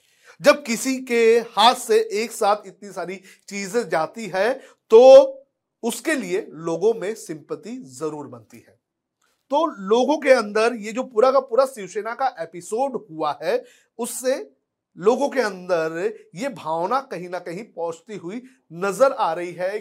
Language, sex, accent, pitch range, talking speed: Hindi, male, native, 170-245 Hz, 150 wpm